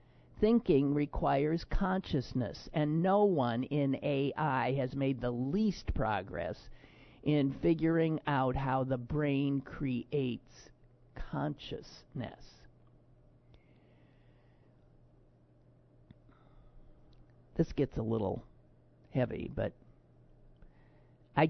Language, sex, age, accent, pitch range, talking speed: English, male, 50-69, American, 115-155 Hz, 80 wpm